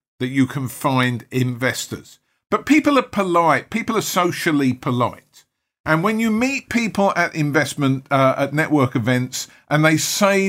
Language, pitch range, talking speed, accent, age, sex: English, 130-190 Hz, 155 wpm, British, 50-69, male